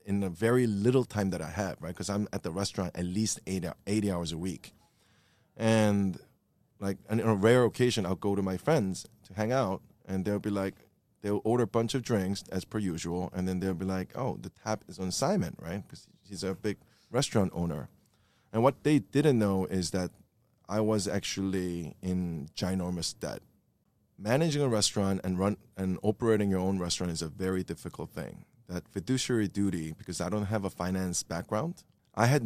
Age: 20-39